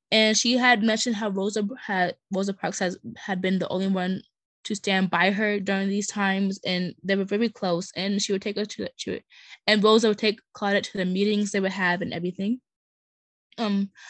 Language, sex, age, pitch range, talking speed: English, female, 10-29, 195-225 Hz, 205 wpm